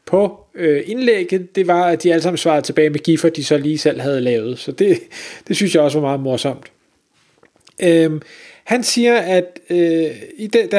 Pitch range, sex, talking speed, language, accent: 155-195 Hz, male, 200 wpm, Danish, native